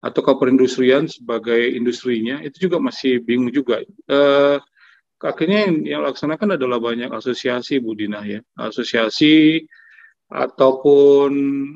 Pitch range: 120-155 Hz